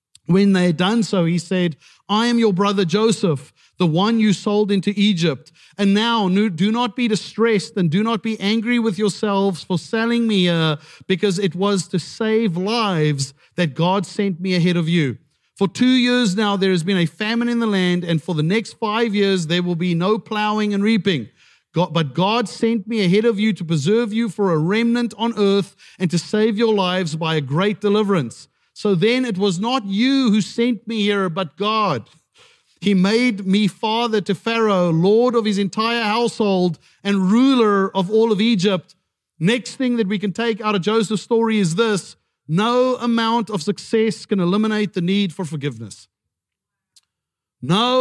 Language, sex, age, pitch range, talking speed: English, male, 50-69, 180-225 Hz, 185 wpm